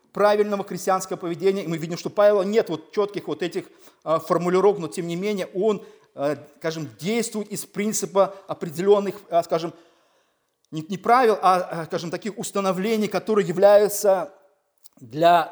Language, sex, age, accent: Russian, male, 40-59, native